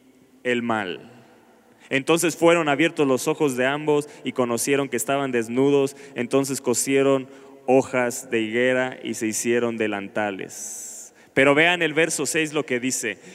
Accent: Mexican